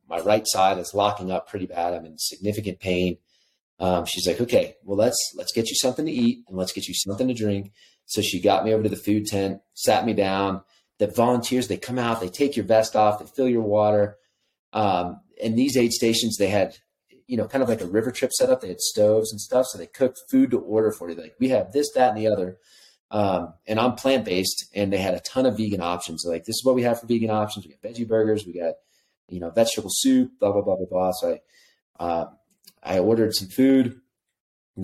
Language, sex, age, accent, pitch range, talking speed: English, male, 30-49, American, 95-115 Hz, 245 wpm